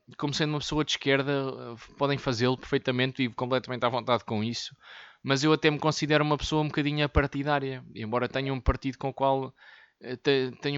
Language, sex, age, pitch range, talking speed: Portuguese, male, 20-39, 130-160 Hz, 185 wpm